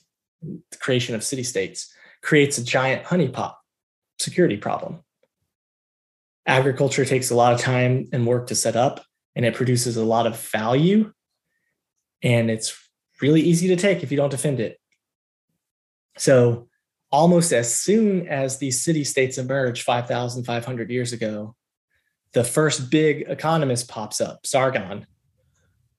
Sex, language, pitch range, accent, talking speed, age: male, English, 120-150 Hz, American, 130 wpm, 20-39